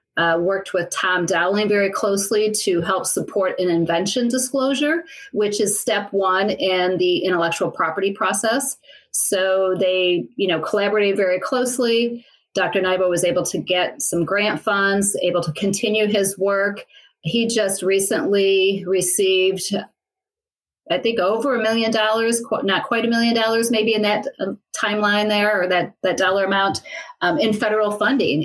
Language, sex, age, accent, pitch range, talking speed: English, female, 30-49, American, 185-220 Hz, 150 wpm